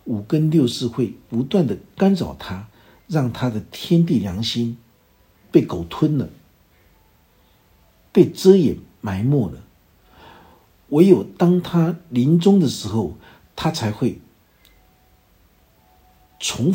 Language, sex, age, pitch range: Chinese, male, 50-69, 95-145 Hz